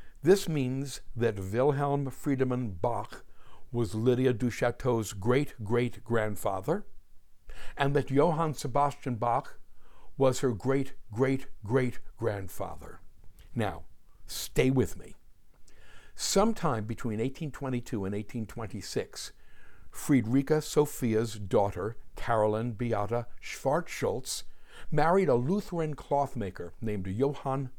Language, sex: English, male